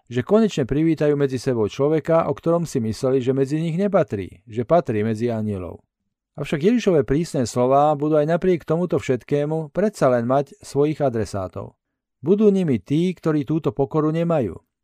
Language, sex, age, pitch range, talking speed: Slovak, male, 40-59, 120-155 Hz, 160 wpm